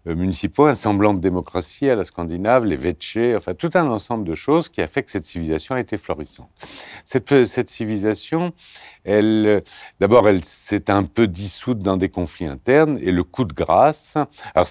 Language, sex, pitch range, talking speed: French, male, 80-115 Hz, 185 wpm